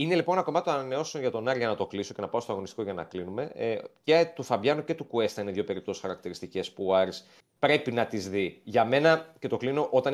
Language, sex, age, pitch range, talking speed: Greek, male, 30-49, 105-155 Hz, 255 wpm